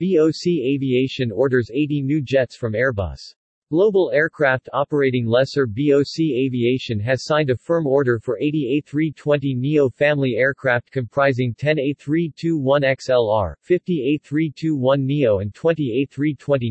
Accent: American